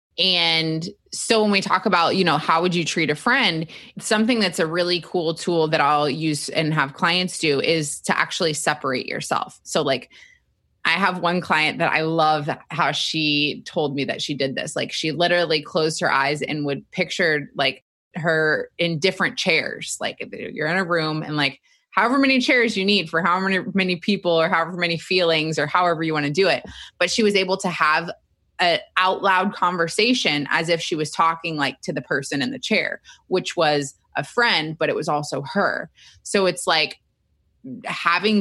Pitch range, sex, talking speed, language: 150-185 Hz, female, 195 wpm, English